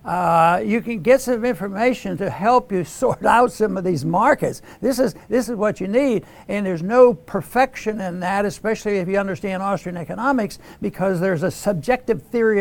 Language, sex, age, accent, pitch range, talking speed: English, male, 60-79, American, 180-230 Hz, 185 wpm